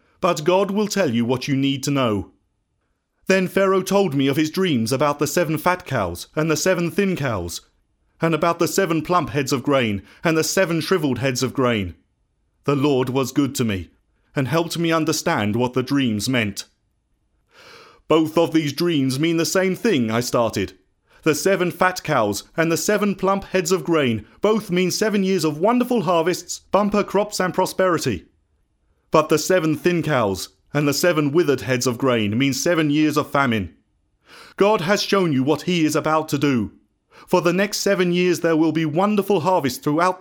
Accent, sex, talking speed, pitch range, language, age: British, male, 190 wpm, 130-185 Hz, English, 30-49